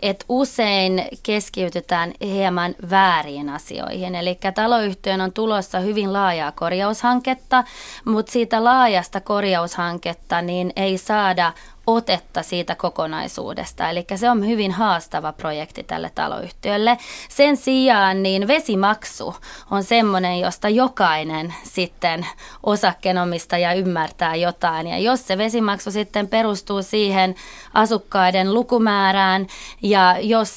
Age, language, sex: 20-39, Finnish, female